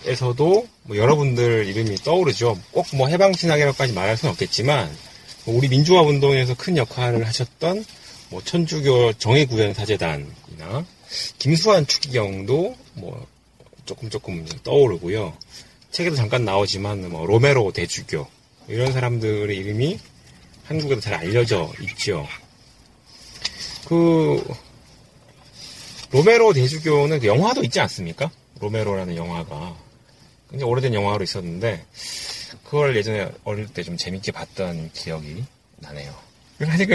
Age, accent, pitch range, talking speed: 30-49, Korean, 105-145 Hz, 95 wpm